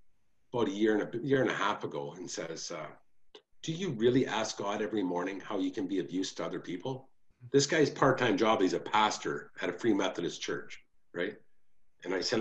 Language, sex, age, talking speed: English, male, 50-69, 215 wpm